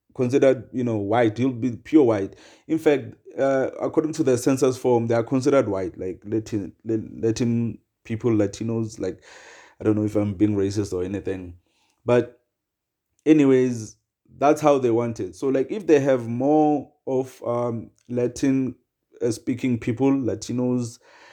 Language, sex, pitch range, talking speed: English, male, 115-145 Hz, 150 wpm